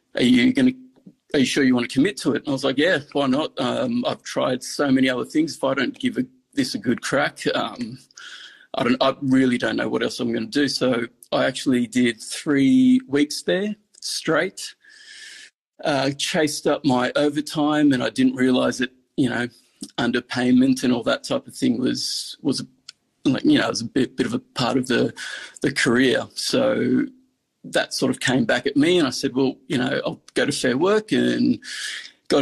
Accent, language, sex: Australian, English, male